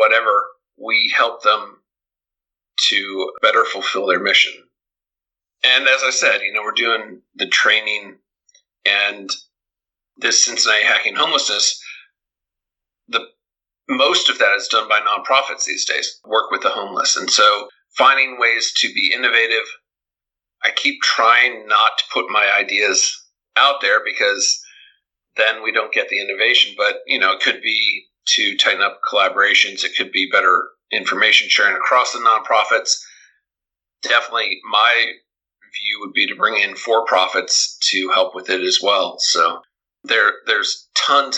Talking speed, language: 145 wpm, English